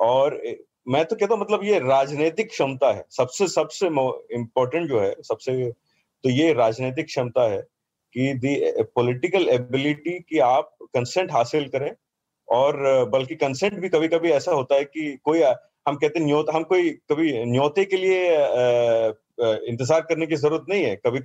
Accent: native